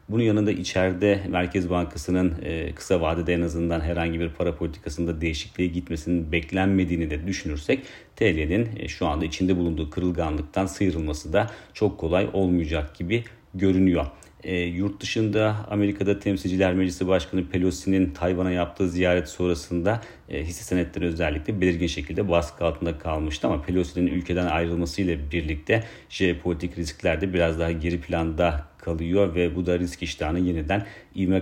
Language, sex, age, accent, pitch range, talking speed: Turkish, male, 40-59, native, 85-95 Hz, 130 wpm